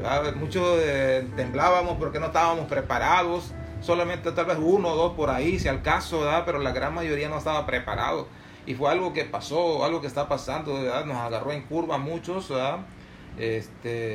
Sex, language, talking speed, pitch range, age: male, Spanish, 170 wpm, 130-160 Hz, 30-49